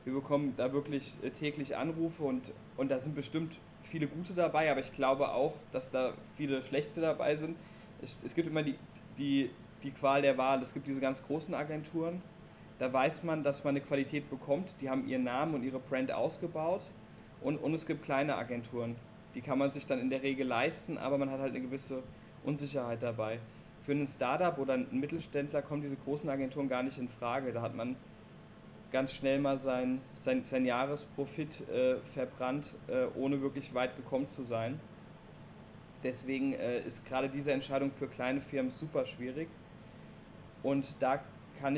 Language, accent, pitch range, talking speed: German, German, 130-150 Hz, 180 wpm